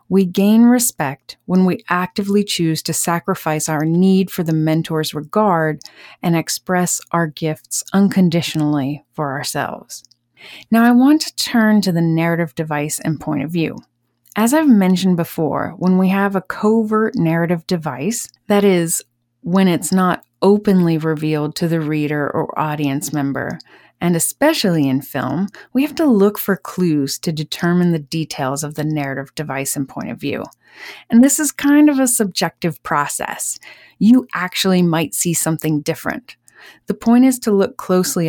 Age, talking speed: 30-49, 160 wpm